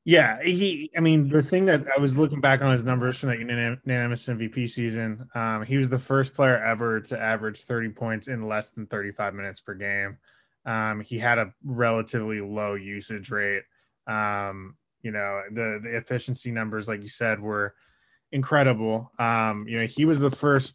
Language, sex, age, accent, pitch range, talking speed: English, male, 20-39, American, 110-130 Hz, 185 wpm